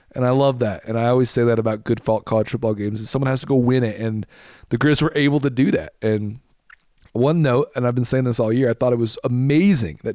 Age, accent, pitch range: 30-49, American, 110-130 Hz